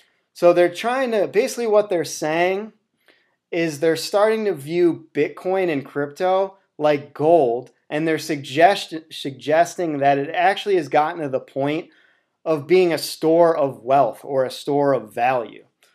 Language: English